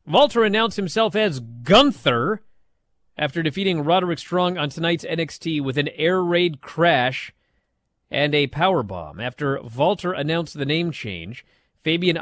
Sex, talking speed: male, 135 wpm